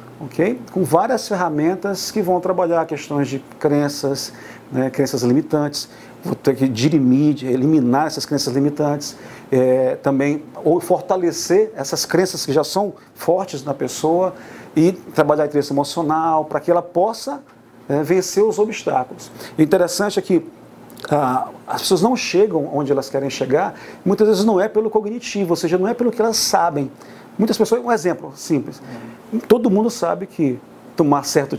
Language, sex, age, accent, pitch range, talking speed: Portuguese, male, 40-59, Brazilian, 140-200 Hz, 160 wpm